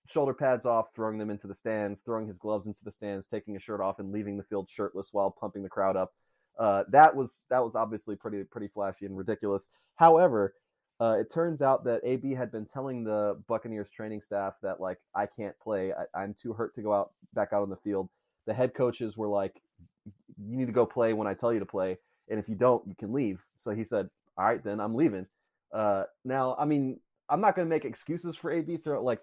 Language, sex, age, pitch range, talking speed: English, male, 20-39, 100-125 Hz, 235 wpm